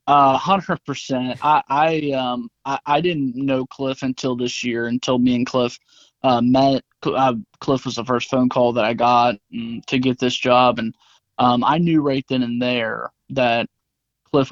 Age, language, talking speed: 20-39, English, 180 wpm